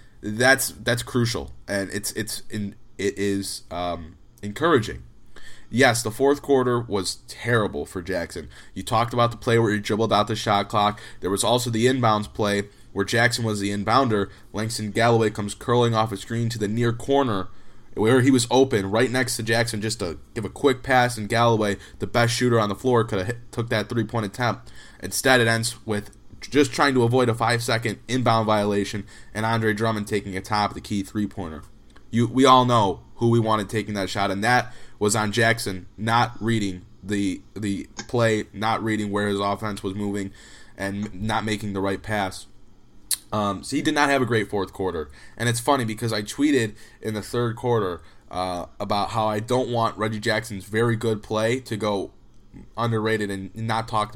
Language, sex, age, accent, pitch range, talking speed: English, male, 20-39, American, 100-120 Hz, 195 wpm